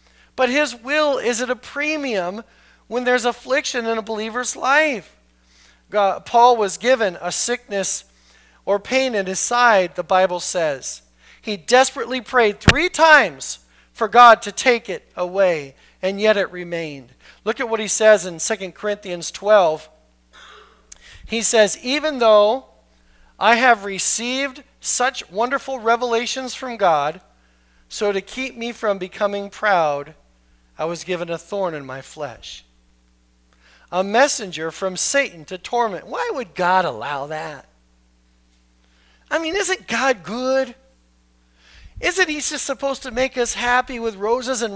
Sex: male